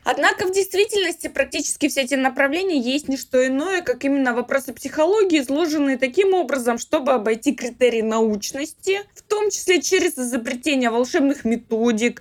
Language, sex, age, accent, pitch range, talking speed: Russian, female, 20-39, native, 230-310 Hz, 145 wpm